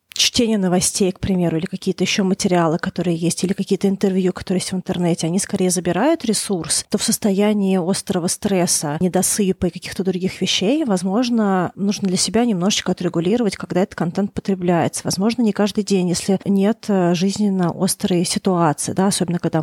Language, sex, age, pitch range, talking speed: Russian, female, 30-49, 175-200 Hz, 160 wpm